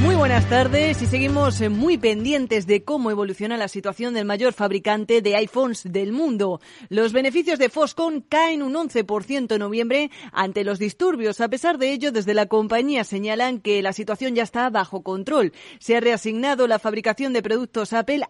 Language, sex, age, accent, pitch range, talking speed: Spanish, female, 30-49, Spanish, 205-260 Hz, 175 wpm